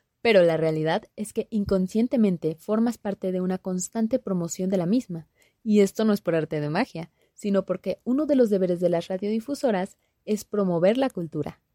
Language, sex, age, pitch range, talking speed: Spanish, female, 20-39, 175-220 Hz, 185 wpm